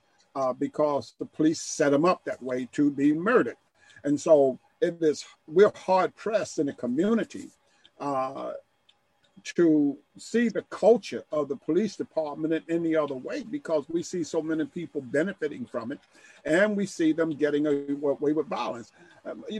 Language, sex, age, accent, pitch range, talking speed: English, male, 50-69, American, 145-180 Hz, 160 wpm